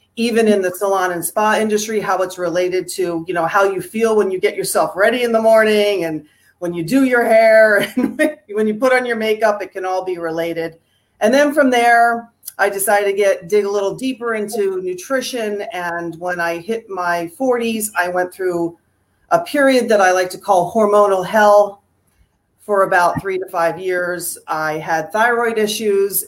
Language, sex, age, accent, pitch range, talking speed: English, female, 40-59, American, 175-225 Hz, 190 wpm